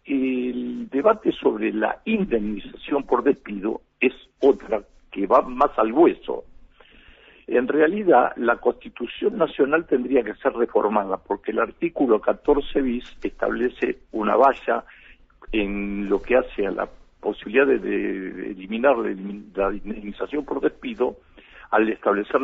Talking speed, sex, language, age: 125 wpm, male, Spanish, 50-69